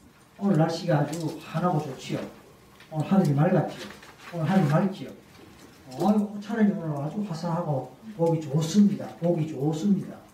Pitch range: 140-195 Hz